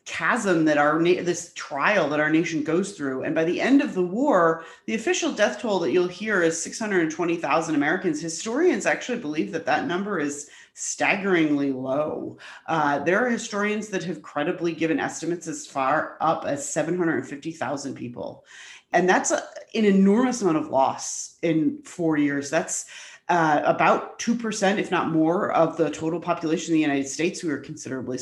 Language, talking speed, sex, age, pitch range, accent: English, 170 wpm, female, 30-49, 160-205 Hz, American